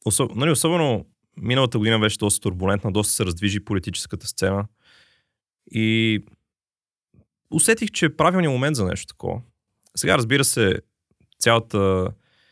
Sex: male